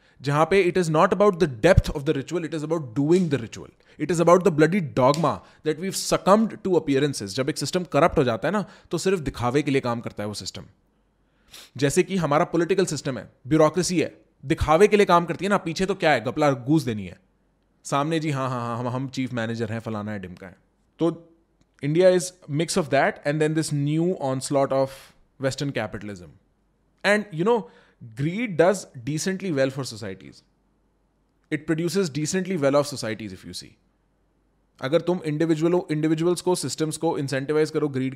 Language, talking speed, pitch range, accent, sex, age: English, 140 wpm, 130-170 Hz, Indian, male, 20-39